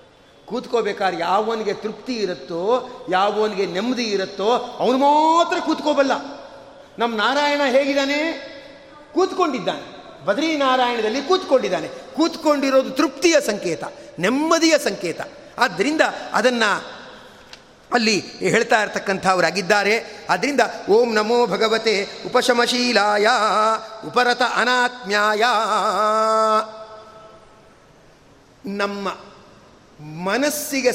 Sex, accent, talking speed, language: male, native, 70 wpm, Kannada